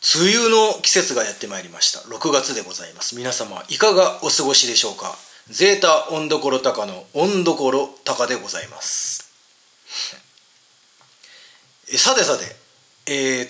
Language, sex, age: Japanese, male, 30-49